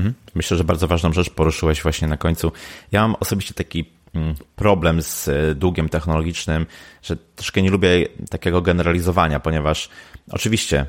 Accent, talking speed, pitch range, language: native, 140 wpm, 80-100 Hz, Polish